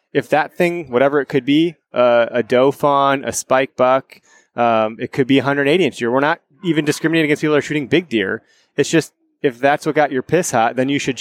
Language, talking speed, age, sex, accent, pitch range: English, 235 wpm, 20-39, male, American, 120-145 Hz